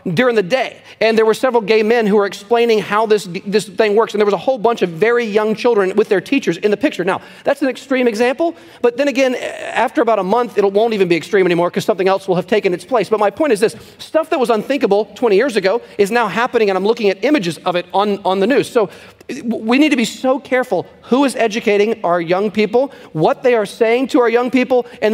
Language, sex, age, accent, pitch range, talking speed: English, male, 40-59, American, 190-240 Hz, 255 wpm